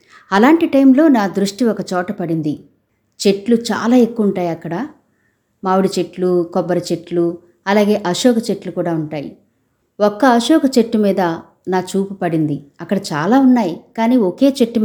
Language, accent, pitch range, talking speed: Telugu, native, 175-230 Hz, 135 wpm